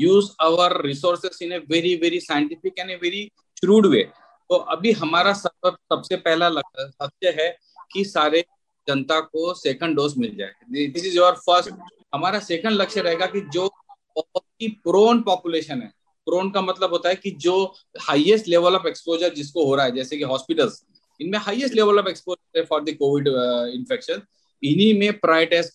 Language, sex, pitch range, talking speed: Hindi, male, 155-200 Hz, 135 wpm